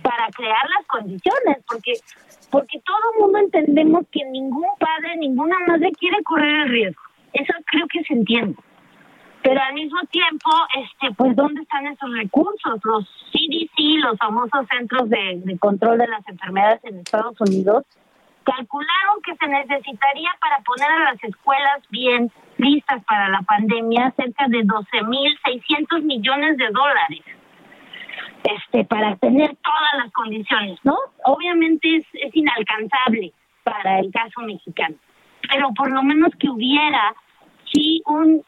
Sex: female